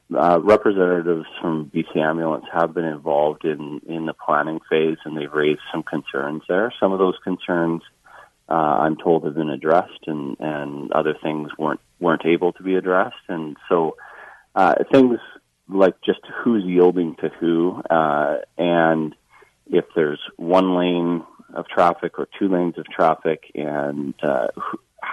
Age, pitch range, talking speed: 30-49, 75-90 Hz, 155 wpm